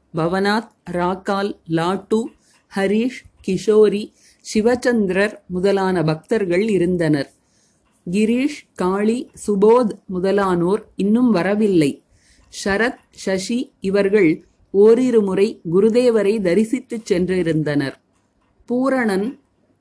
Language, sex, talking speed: Tamil, female, 75 wpm